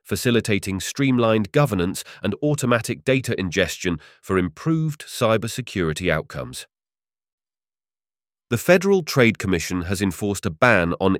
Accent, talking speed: British, 105 wpm